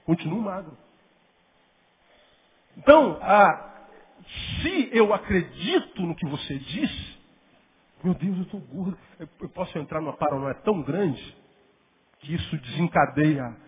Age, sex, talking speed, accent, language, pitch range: 50-69, male, 115 wpm, Brazilian, Portuguese, 170-265 Hz